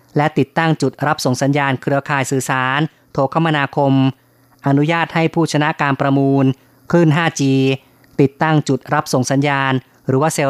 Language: Thai